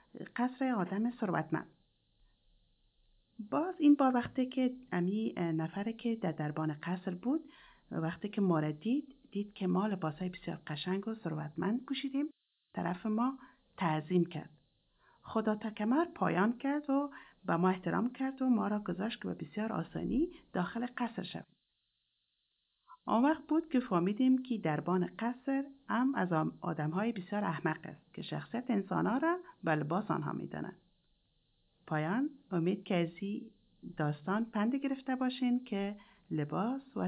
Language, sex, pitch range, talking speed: French, female, 175-255 Hz, 145 wpm